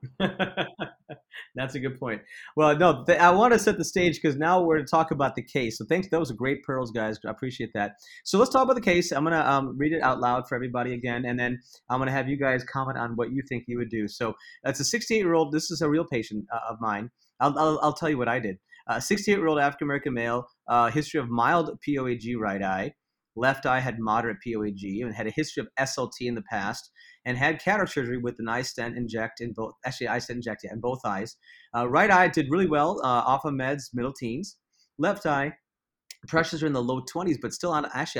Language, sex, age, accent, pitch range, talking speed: English, male, 30-49, American, 120-155 Hz, 245 wpm